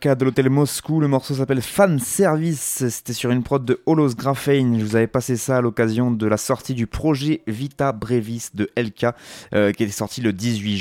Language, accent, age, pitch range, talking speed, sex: French, French, 20-39, 100-130 Hz, 205 wpm, male